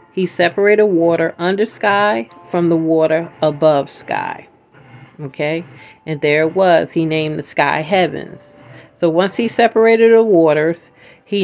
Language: English